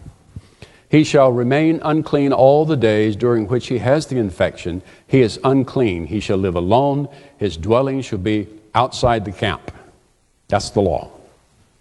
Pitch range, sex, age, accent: 110-150 Hz, male, 60-79, American